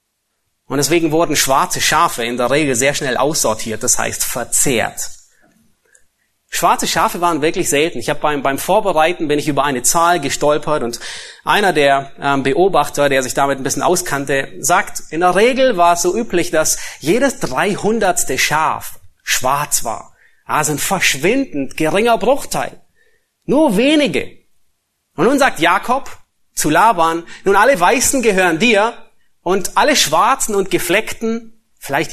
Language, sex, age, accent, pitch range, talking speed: German, male, 30-49, German, 145-210 Hz, 145 wpm